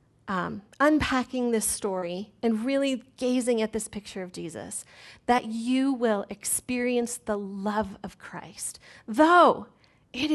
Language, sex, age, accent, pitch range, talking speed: English, female, 30-49, American, 200-255 Hz, 130 wpm